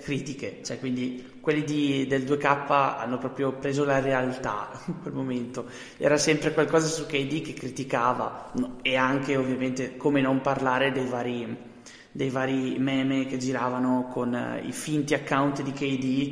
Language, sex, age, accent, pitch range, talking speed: Italian, male, 20-39, native, 130-145 Hz, 150 wpm